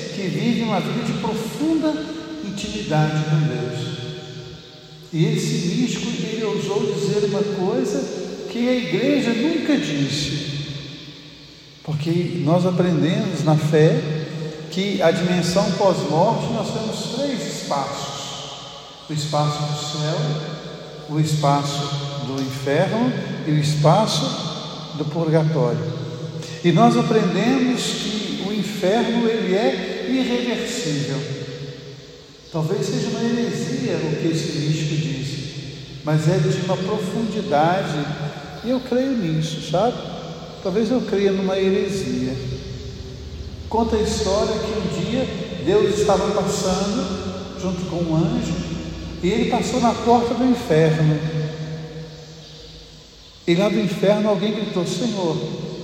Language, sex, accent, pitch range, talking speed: Portuguese, male, Brazilian, 155-210 Hz, 115 wpm